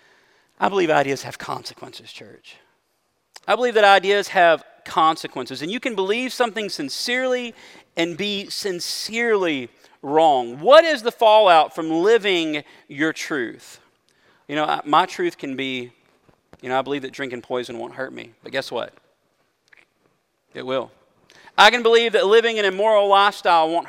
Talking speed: 155 wpm